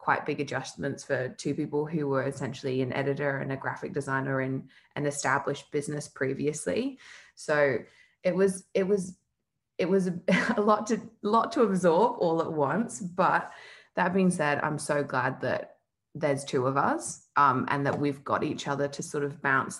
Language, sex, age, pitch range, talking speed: English, female, 20-39, 140-190 Hz, 180 wpm